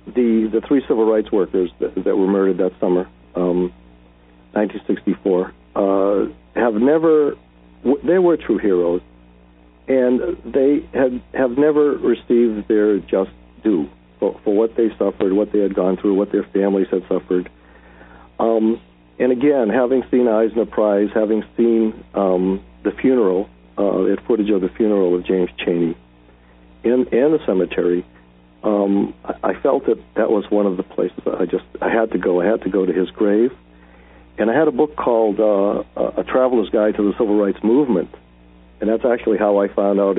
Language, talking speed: English, 175 wpm